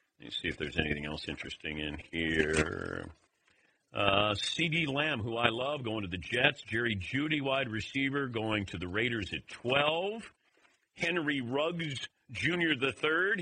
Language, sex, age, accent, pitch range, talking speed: English, male, 50-69, American, 105-160 Hz, 150 wpm